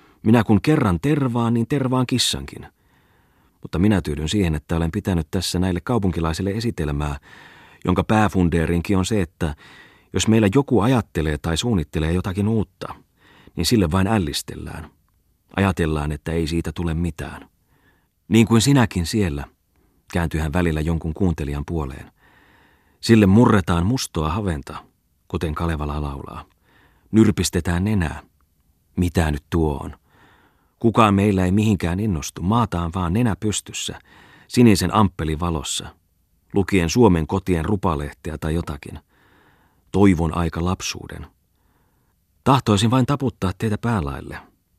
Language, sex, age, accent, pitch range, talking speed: Finnish, male, 30-49, native, 80-105 Hz, 120 wpm